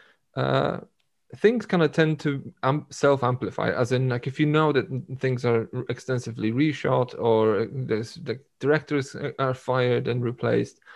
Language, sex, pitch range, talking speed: English, male, 110-140 Hz, 150 wpm